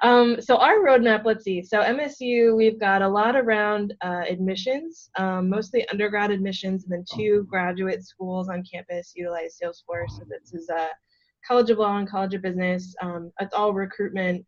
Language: English